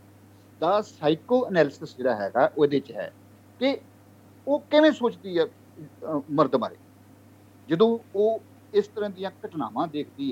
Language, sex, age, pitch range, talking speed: Punjabi, male, 50-69, 130-200 Hz, 130 wpm